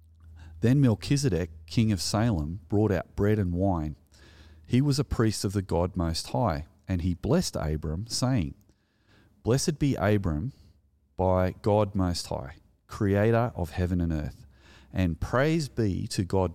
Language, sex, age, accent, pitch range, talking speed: English, male, 30-49, Australian, 85-110 Hz, 150 wpm